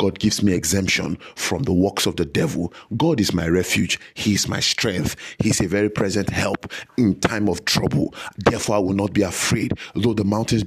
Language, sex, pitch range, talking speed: English, male, 95-115 Hz, 210 wpm